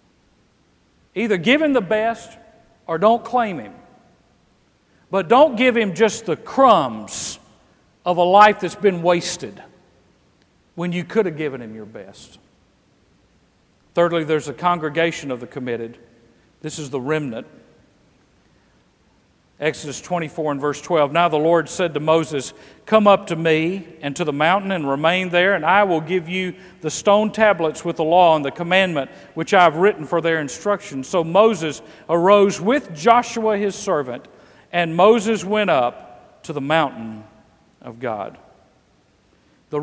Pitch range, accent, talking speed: 150-200 Hz, American, 150 wpm